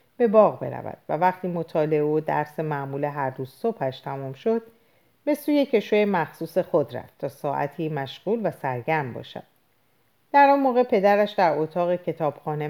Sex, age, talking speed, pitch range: female, 50-69, 155 wpm, 145-215 Hz